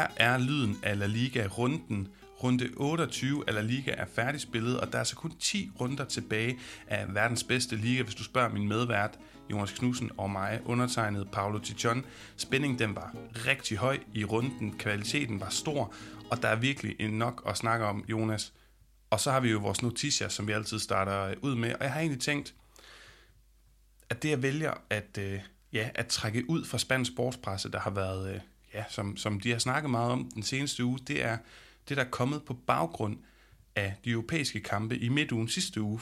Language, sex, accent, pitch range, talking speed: Danish, male, native, 110-130 Hz, 190 wpm